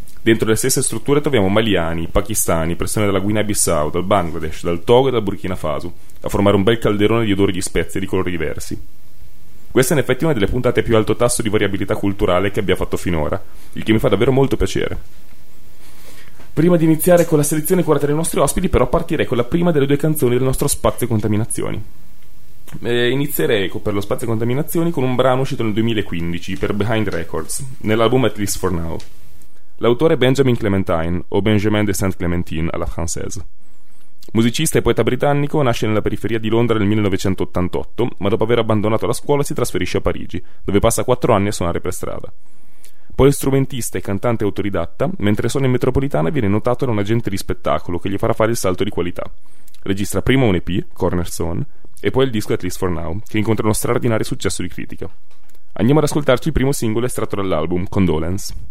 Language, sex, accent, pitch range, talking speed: Italian, male, native, 95-125 Hz, 190 wpm